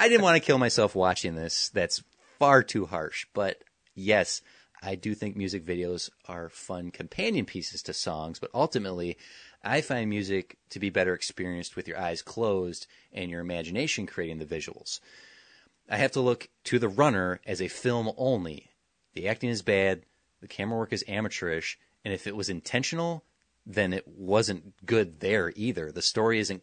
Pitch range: 90-110 Hz